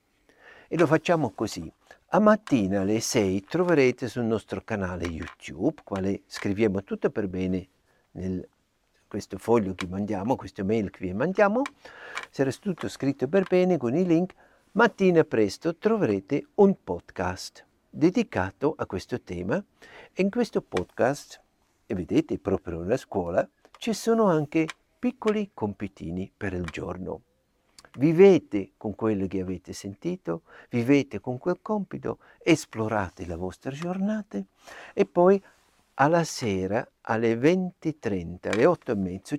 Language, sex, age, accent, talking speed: Italian, male, 60-79, native, 130 wpm